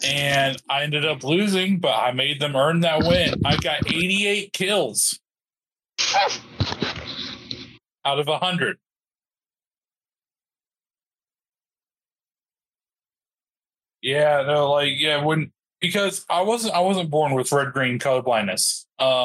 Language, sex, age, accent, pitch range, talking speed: English, male, 20-39, American, 125-155 Hz, 110 wpm